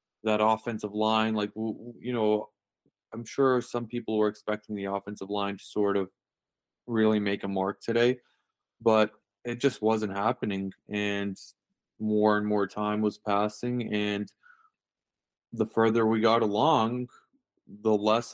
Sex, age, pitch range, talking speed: male, 20-39, 100-115 Hz, 140 wpm